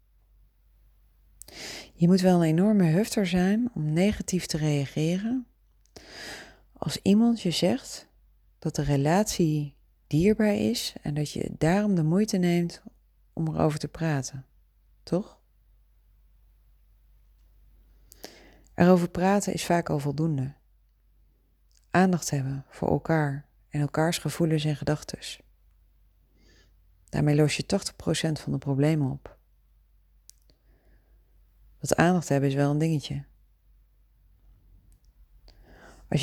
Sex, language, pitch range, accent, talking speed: female, Dutch, 130-175 Hz, Dutch, 105 wpm